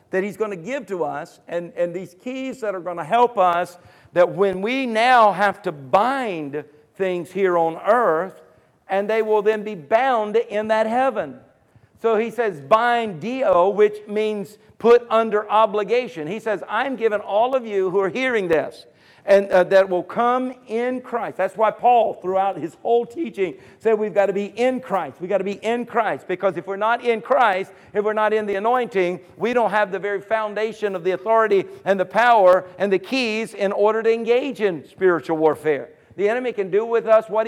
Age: 50-69